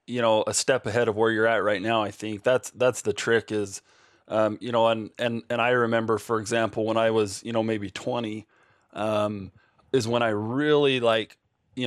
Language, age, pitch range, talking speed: English, 20-39, 105-120 Hz, 210 wpm